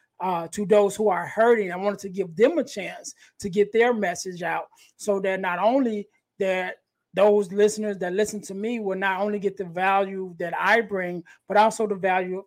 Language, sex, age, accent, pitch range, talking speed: English, male, 20-39, American, 185-210 Hz, 200 wpm